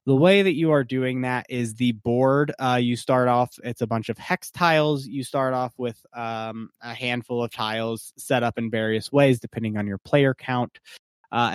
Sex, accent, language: male, American, English